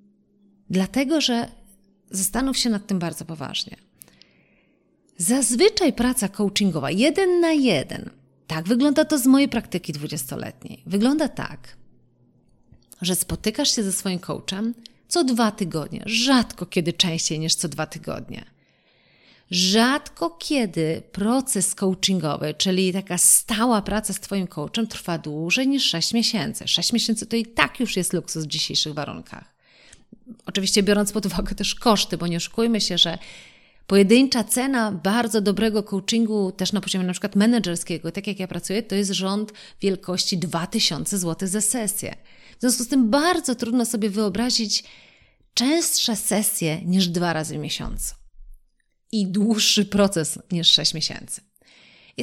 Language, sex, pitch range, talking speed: Polish, female, 180-235 Hz, 140 wpm